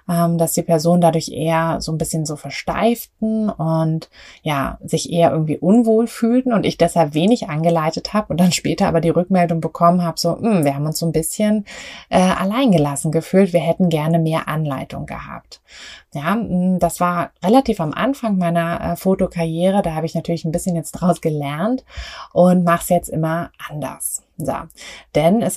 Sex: female